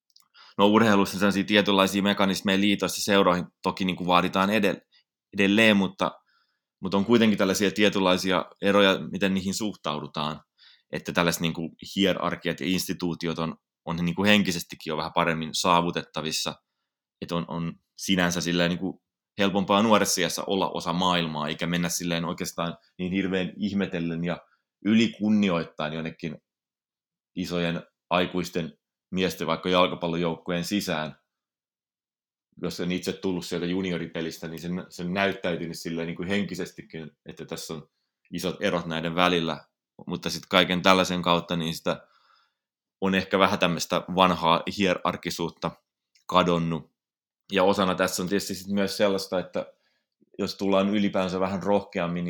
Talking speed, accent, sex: 125 wpm, native, male